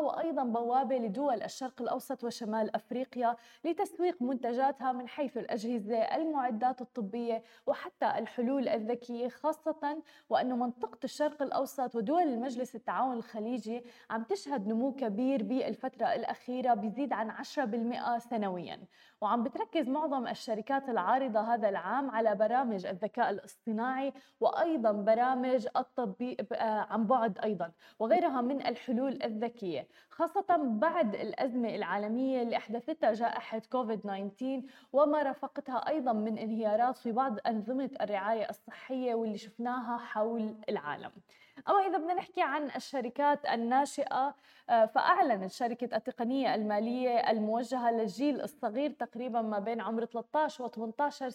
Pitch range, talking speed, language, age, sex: 225-275 Hz, 115 wpm, Arabic, 20-39, female